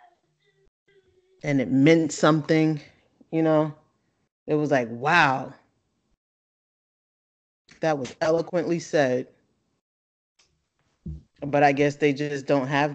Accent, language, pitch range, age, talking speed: American, English, 140-160 Hz, 30-49, 95 wpm